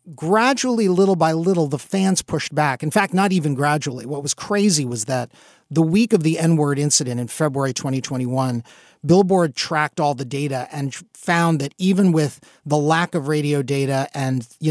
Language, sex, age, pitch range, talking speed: English, male, 40-59, 135-180 Hz, 180 wpm